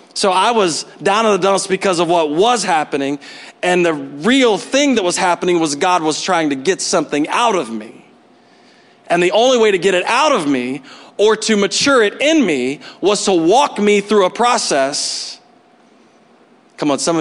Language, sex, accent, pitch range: English, male, American, 190-260 Hz